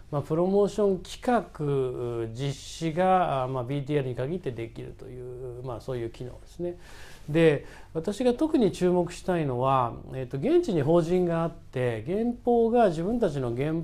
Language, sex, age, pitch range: Japanese, male, 40-59, 120-185 Hz